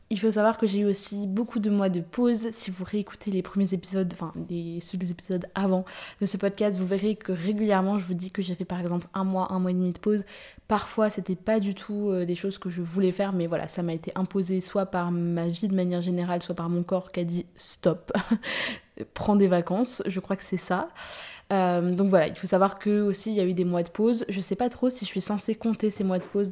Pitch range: 180-205 Hz